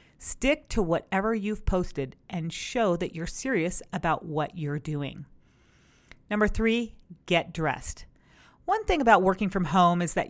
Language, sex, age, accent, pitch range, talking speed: English, female, 40-59, American, 160-210 Hz, 150 wpm